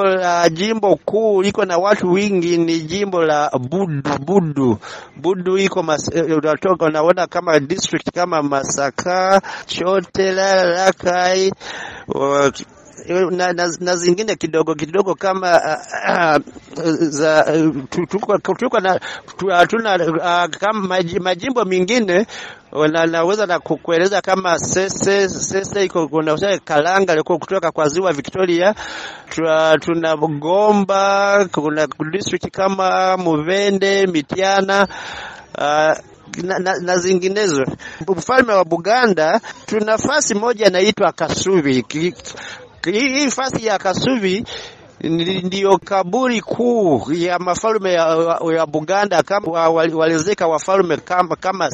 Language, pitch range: Swahili, 160-195 Hz